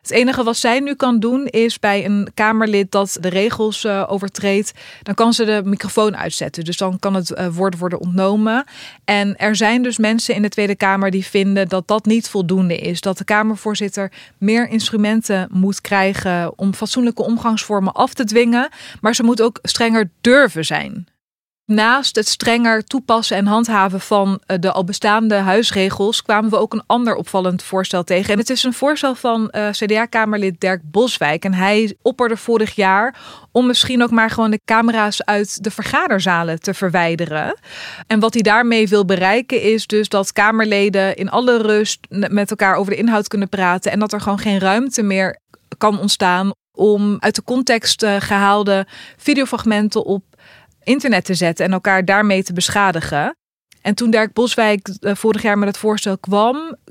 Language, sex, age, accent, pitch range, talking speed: Dutch, female, 20-39, Dutch, 195-225 Hz, 175 wpm